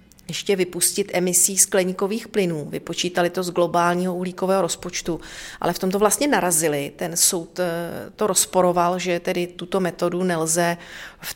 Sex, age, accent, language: female, 40-59, native, Czech